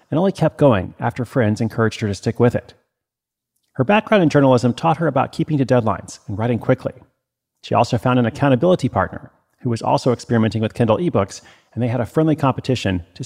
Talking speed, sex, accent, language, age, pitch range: 205 wpm, male, American, English, 40-59, 110-140 Hz